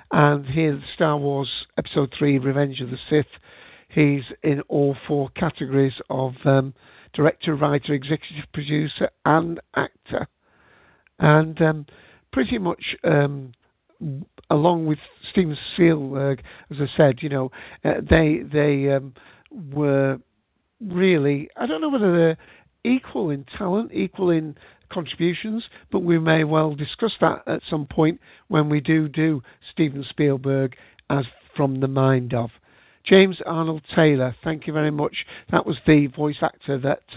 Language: English